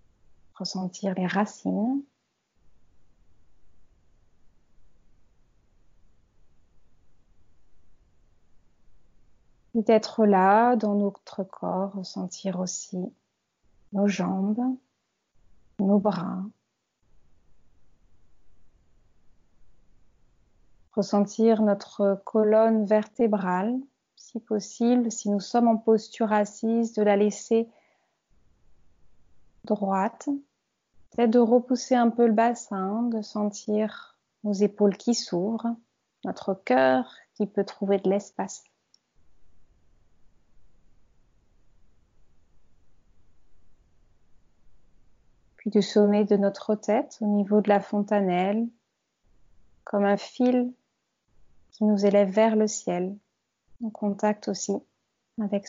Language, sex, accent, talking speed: French, female, French, 80 wpm